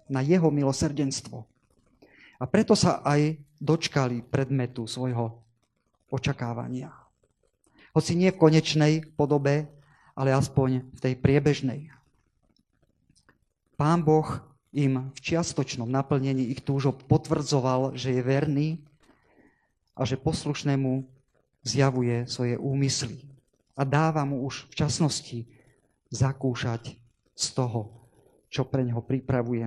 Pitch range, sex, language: 125-150 Hz, male, Slovak